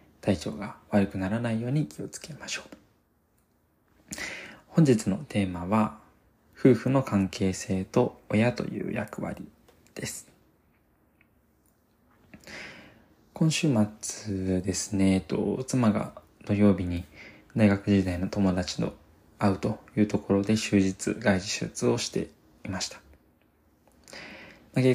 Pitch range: 95-120 Hz